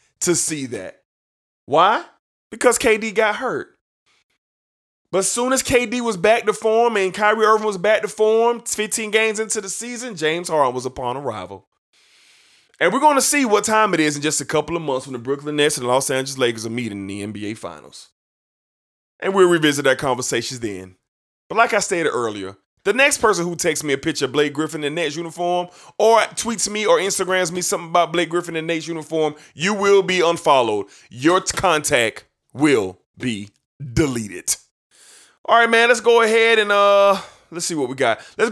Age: 20-39